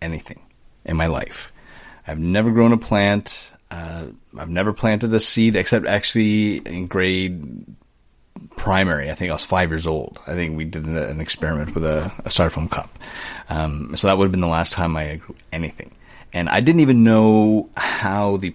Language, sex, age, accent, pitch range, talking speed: English, male, 30-49, American, 80-100 Hz, 185 wpm